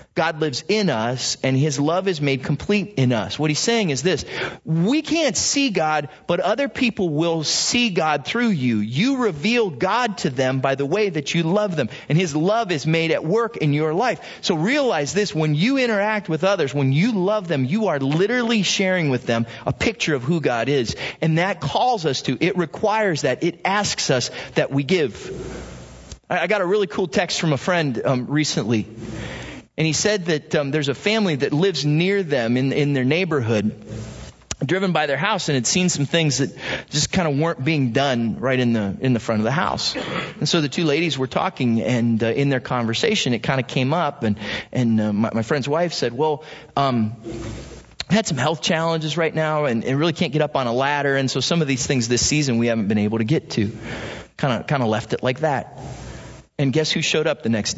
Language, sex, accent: English, male, American